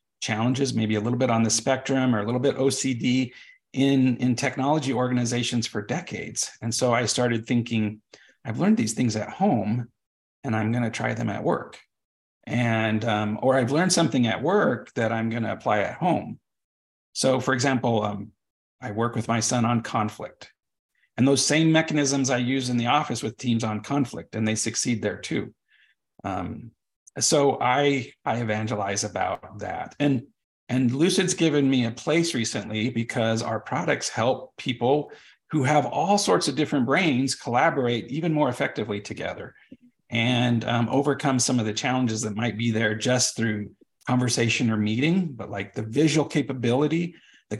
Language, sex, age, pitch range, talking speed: English, male, 40-59, 110-140 Hz, 170 wpm